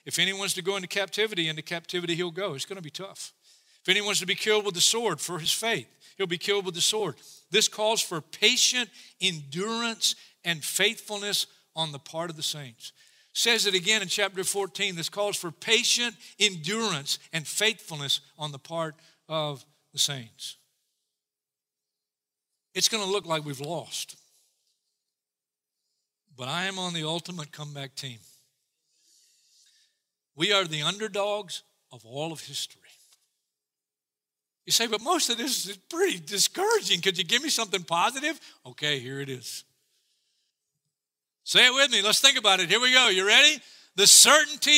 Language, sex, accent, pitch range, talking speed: English, male, American, 150-220 Hz, 160 wpm